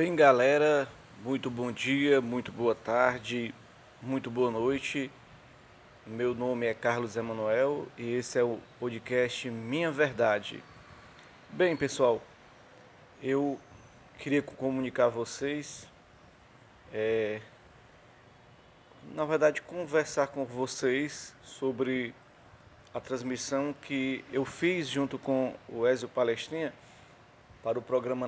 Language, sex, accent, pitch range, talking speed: English, male, Brazilian, 120-145 Hz, 105 wpm